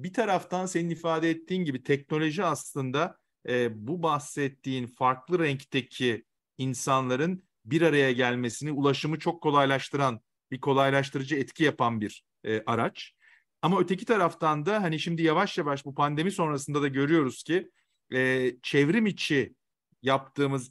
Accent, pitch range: native, 135-175 Hz